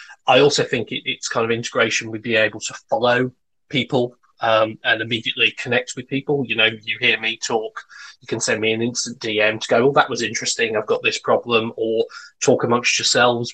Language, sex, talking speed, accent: English, male, 205 wpm, British